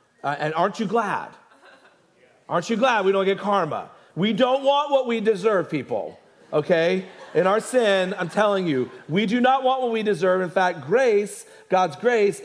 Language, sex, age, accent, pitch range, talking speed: English, male, 40-59, American, 140-195 Hz, 185 wpm